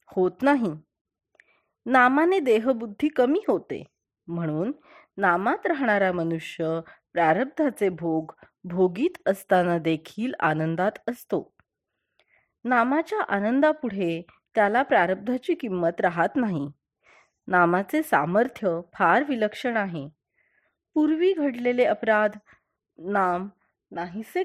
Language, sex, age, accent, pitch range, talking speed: Marathi, female, 30-49, native, 175-265 Hz, 75 wpm